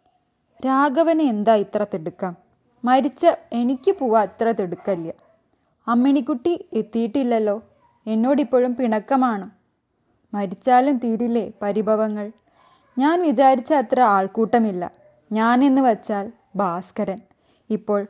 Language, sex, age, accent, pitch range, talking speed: Malayalam, female, 20-39, native, 205-260 Hz, 80 wpm